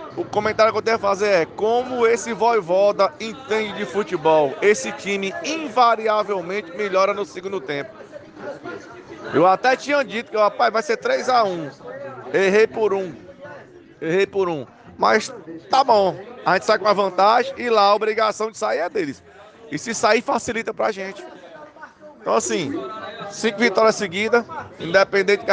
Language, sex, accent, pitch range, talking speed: Portuguese, male, Brazilian, 185-220 Hz, 155 wpm